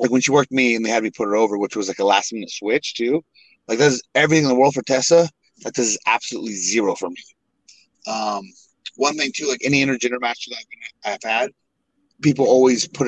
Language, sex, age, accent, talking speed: English, male, 30-49, American, 240 wpm